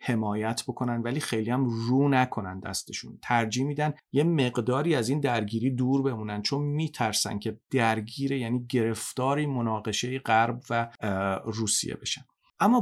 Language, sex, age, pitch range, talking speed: Persian, male, 40-59, 110-135 Hz, 135 wpm